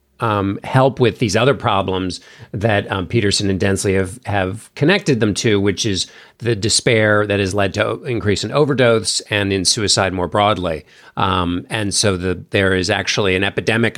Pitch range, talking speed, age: 100-125 Hz, 170 wpm, 50-69